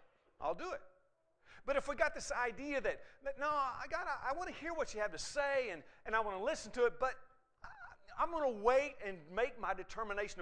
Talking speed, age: 230 wpm, 40-59